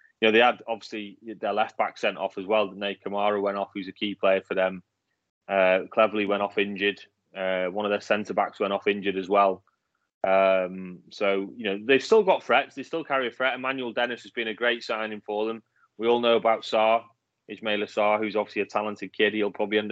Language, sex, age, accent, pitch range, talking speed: English, male, 20-39, British, 100-115 Hz, 220 wpm